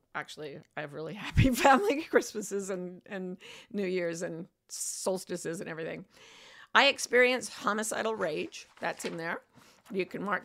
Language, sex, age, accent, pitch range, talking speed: English, female, 50-69, American, 185-265 Hz, 145 wpm